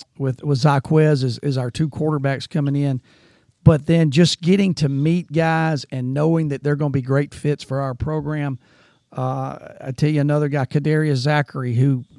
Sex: male